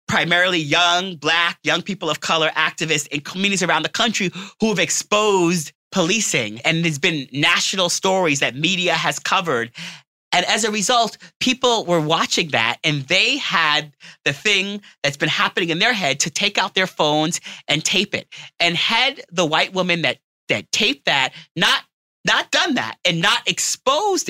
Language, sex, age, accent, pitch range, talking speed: English, male, 30-49, American, 155-200 Hz, 170 wpm